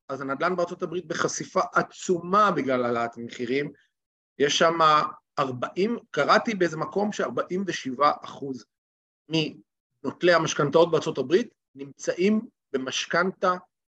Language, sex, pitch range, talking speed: Hebrew, male, 140-200 Hz, 95 wpm